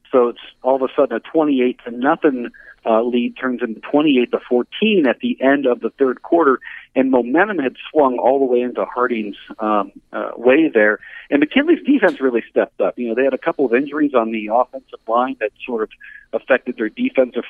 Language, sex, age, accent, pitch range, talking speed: English, male, 50-69, American, 115-140 Hz, 210 wpm